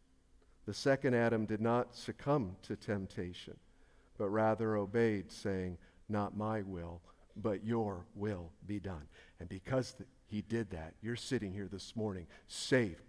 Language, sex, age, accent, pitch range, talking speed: English, male, 50-69, American, 100-125 Hz, 140 wpm